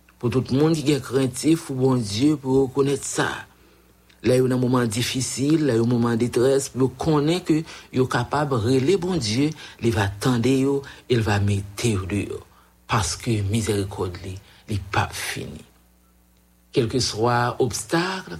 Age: 60-79